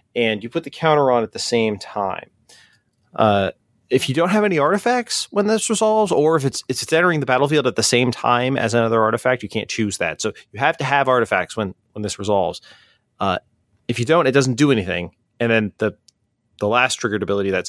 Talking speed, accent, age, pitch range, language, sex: 215 wpm, American, 30-49, 105-150 Hz, English, male